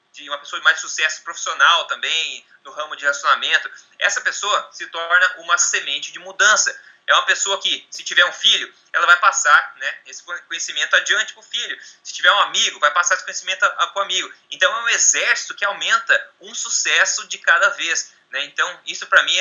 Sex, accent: male, Brazilian